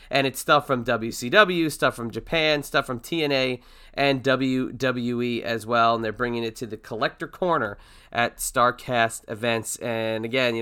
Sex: male